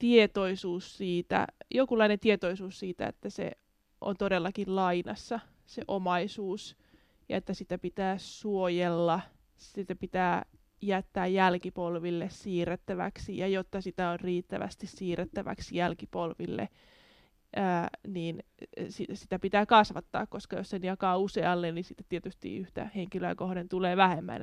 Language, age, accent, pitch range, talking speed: Finnish, 20-39, native, 180-205 Hz, 115 wpm